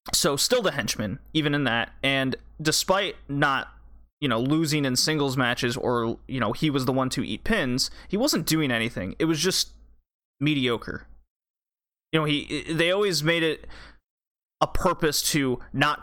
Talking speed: 165 wpm